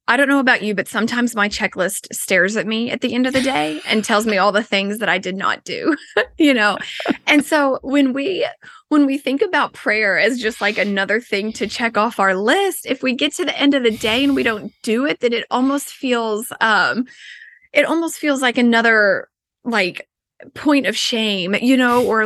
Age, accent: 20-39, American